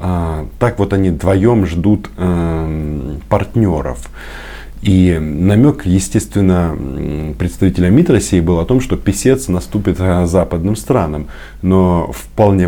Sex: male